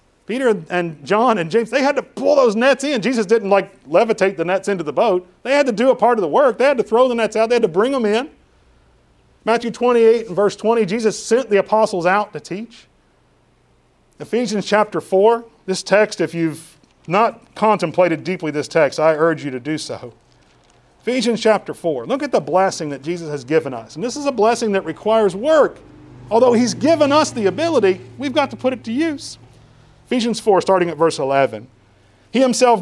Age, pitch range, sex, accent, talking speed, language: 40-59, 165-230 Hz, male, American, 210 wpm, English